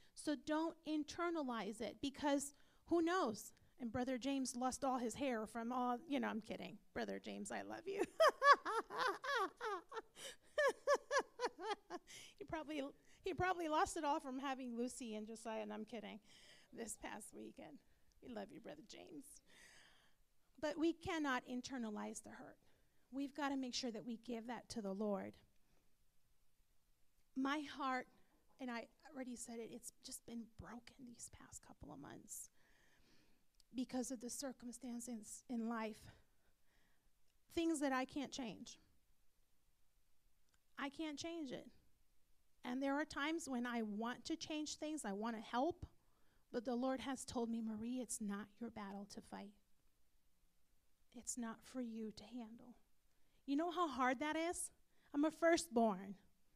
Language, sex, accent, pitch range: English, female, American, 230-300 Hz